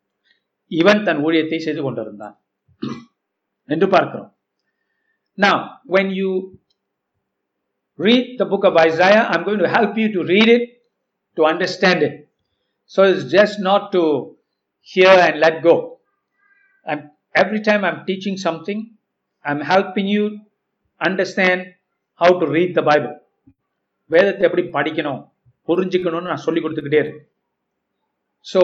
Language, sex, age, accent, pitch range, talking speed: Tamil, male, 60-79, native, 155-200 Hz, 35 wpm